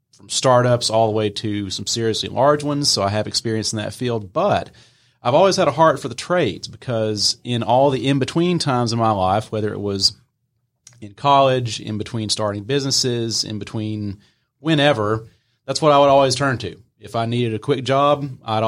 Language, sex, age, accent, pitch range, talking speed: English, male, 30-49, American, 105-130 Hz, 195 wpm